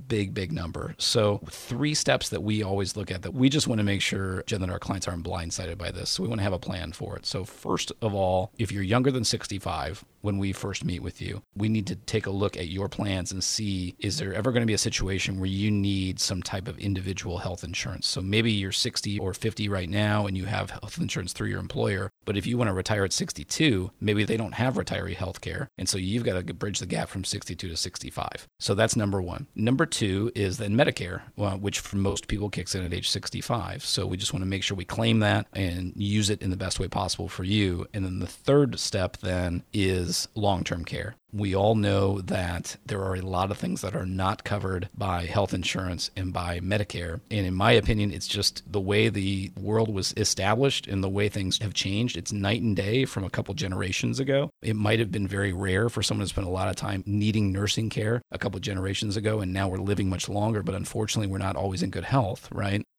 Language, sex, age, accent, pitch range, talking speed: English, male, 40-59, American, 95-110 Hz, 240 wpm